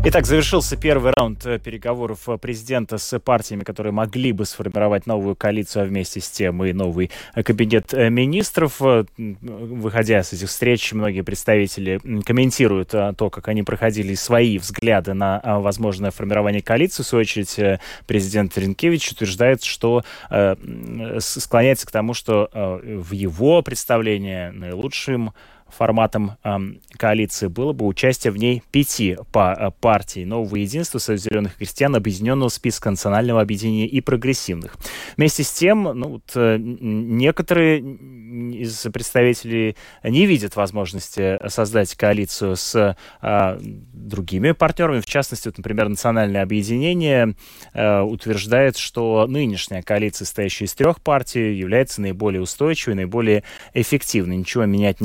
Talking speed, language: 125 wpm, Russian